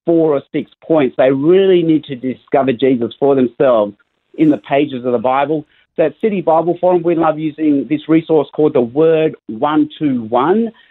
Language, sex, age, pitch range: English, male, 50-69, 135-180 Hz